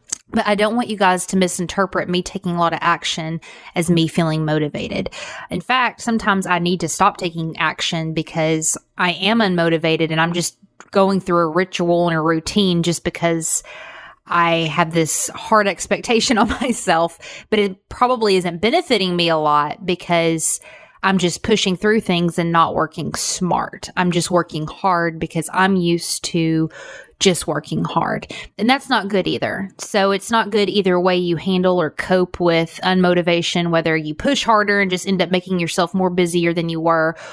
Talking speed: 180 wpm